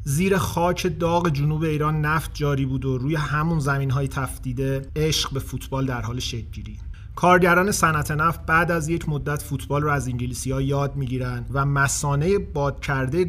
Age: 30-49